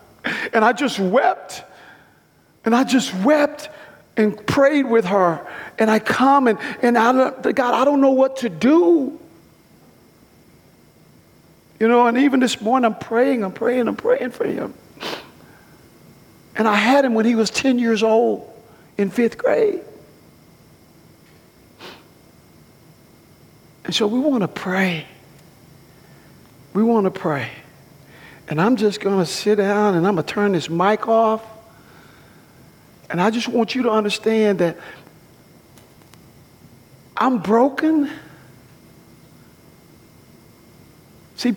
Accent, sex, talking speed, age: American, male, 130 wpm, 50-69